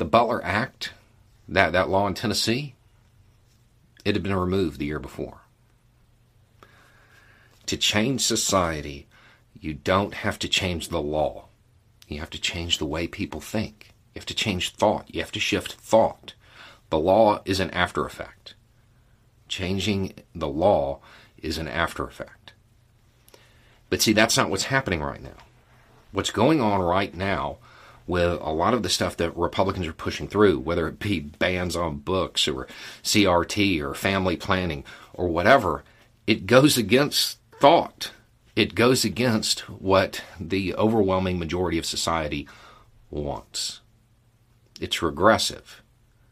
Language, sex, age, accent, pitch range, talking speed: English, male, 50-69, American, 90-115 Hz, 140 wpm